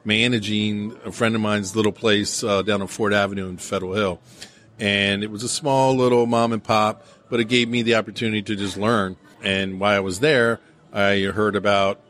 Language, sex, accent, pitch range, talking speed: English, male, American, 95-110 Hz, 205 wpm